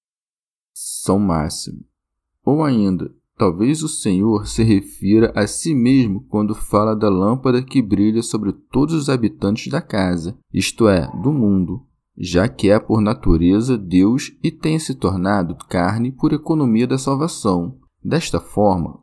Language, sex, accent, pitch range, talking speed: Portuguese, male, Brazilian, 95-130 Hz, 140 wpm